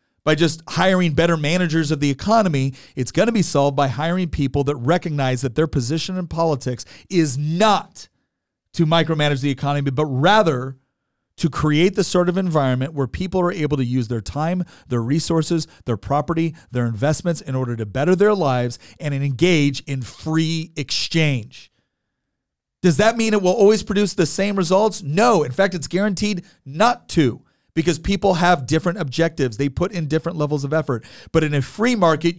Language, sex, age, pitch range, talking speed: English, male, 40-59, 145-185 Hz, 180 wpm